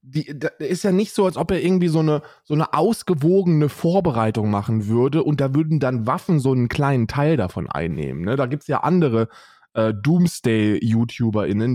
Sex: male